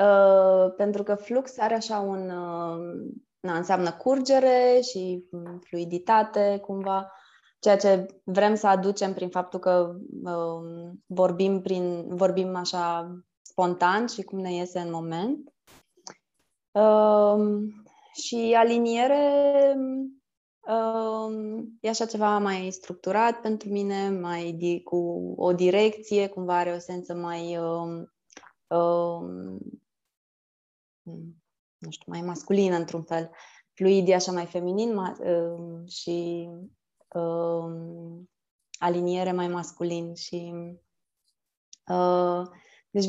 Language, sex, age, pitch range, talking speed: Romanian, female, 20-39, 175-215 Hz, 105 wpm